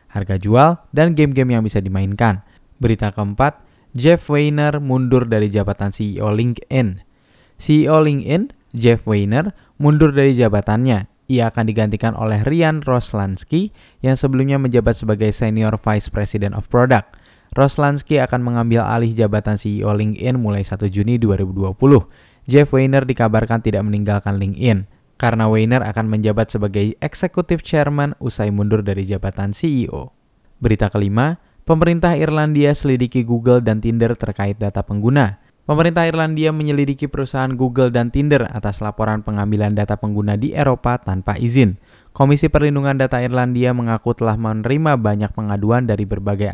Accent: native